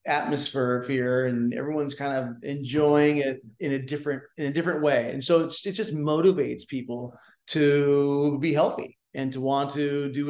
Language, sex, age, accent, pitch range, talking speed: English, male, 30-49, American, 125-145 Hz, 175 wpm